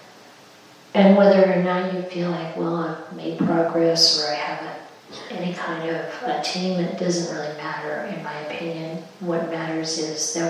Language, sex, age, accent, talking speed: English, female, 40-59, American, 160 wpm